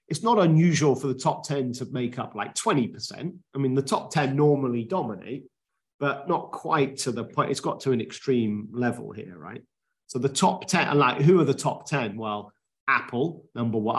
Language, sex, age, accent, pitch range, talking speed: English, male, 40-59, British, 115-140 Hz, 205 wpm